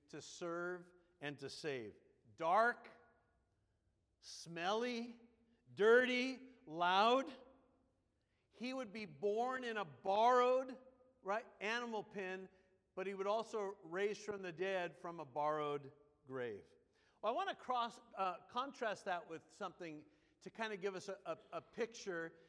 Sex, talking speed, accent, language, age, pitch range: male, 135 wpm, American, English, 50-69, 165-220 Hz